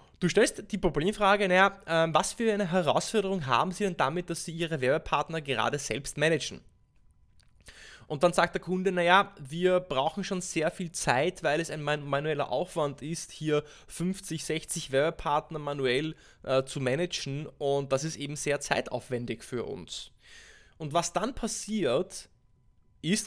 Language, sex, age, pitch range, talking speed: German, male, 20-39, 140-180 Hz, 150 wpm